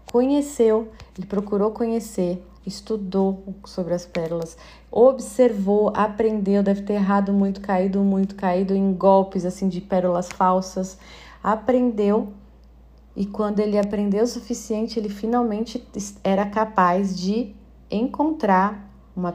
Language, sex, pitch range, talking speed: Portuguese, female, 185-225 Hz, 115 wpm